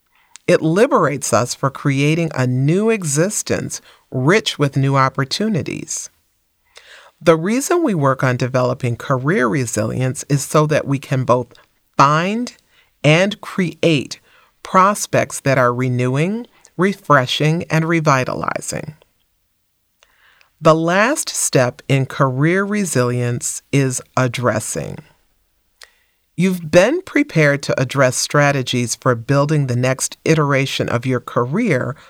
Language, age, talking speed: English, 40-59, 110 wpm